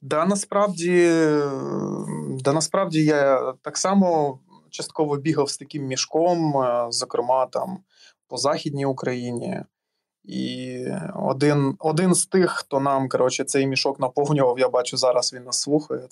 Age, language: 20-39, Ukrainian